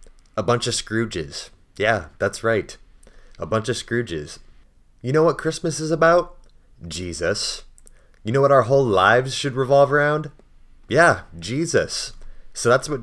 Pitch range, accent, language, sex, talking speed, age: 90-120 Hz, American, English, male, 145 wpm, 30-49